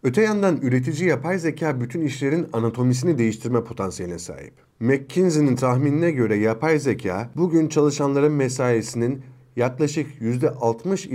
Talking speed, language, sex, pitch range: 115 wpm, Turkish, male, 110-145 Hz